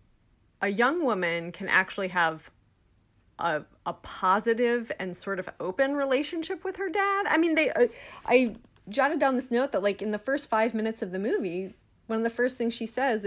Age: 30-49